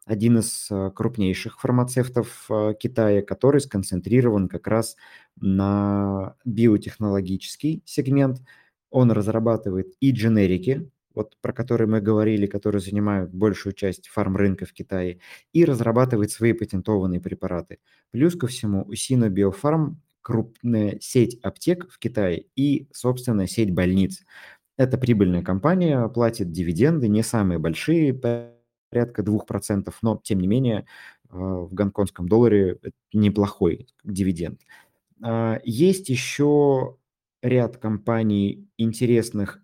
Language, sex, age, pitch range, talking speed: Russian, male, 20-39, 100-125 Hz, 105 wpm